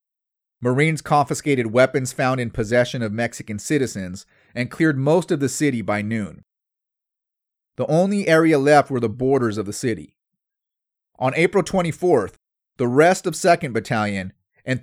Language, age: English, 30-49